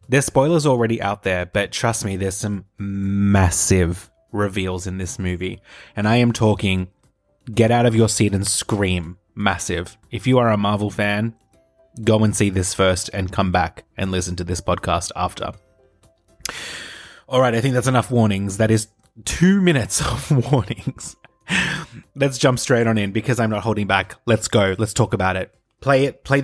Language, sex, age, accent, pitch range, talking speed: English, male, 20-39, Australian, 100-130 Hz, 175 wpm